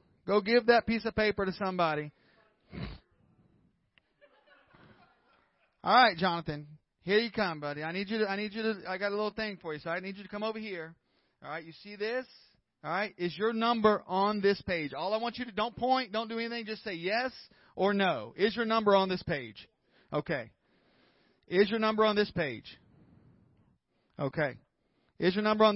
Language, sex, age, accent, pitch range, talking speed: English, male, 40-59, American, 160-220 Hz, 195 wpm